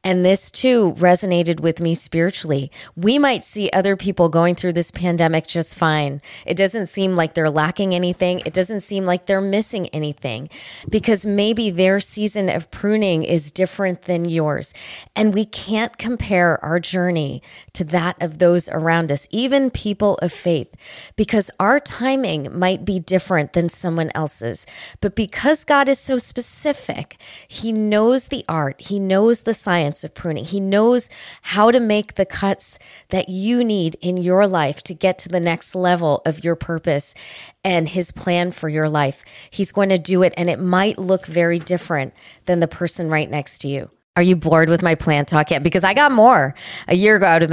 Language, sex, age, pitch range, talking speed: English, female, 20-39, 160-200 Hz, 185 wpm